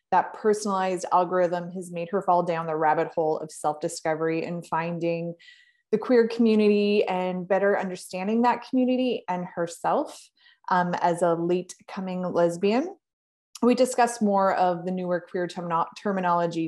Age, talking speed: 20-39, 140 wpm